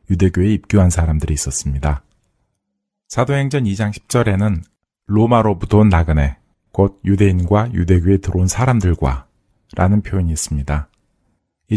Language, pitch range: Korean, 85-105 Hz